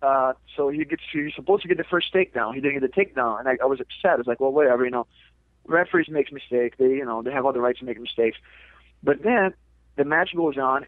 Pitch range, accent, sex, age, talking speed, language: 130-170 Hz, American, male, 30-49, 265 wpm, English